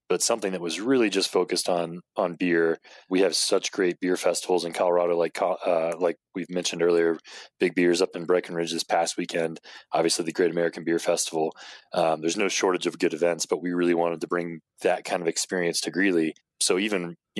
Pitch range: 85-95 Hz